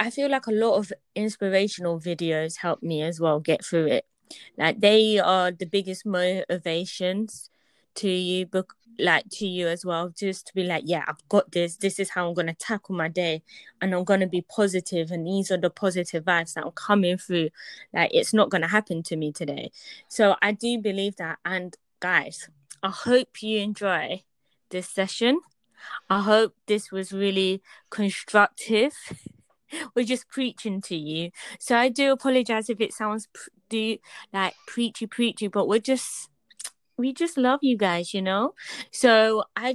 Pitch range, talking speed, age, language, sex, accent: 180-230 Hz, 175 wpm, 20-39, English, female, British